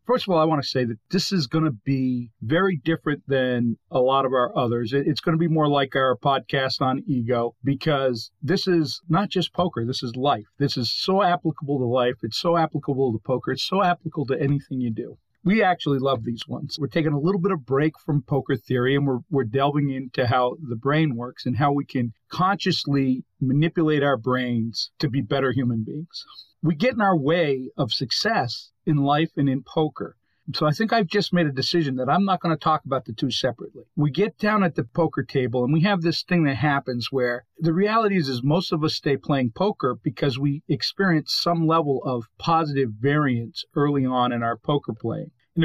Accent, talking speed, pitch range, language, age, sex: American, 215 wpm, 125-165 Hz, English, 40-59, male